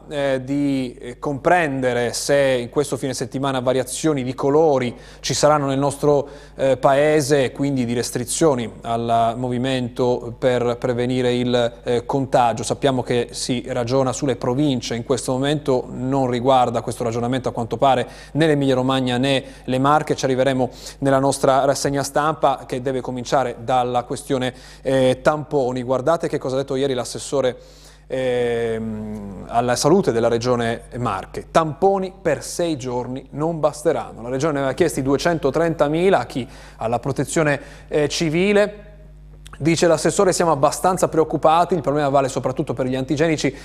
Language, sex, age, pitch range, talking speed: Italian, male, 20-39, 125-150 Hz, 145 wpm